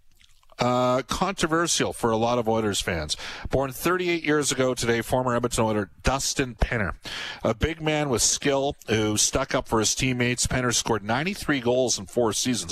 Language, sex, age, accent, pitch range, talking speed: English, male, 40-59, American, 105-135 Hz, 170 wpm